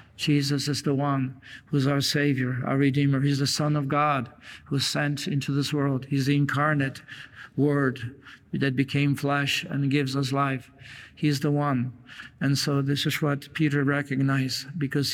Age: 50-69